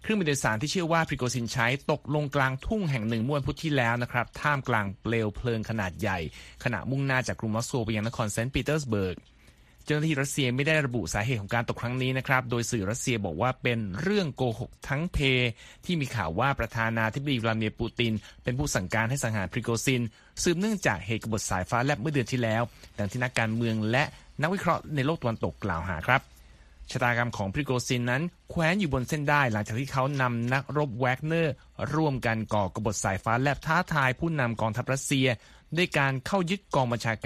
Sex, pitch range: male, 115-145 Hz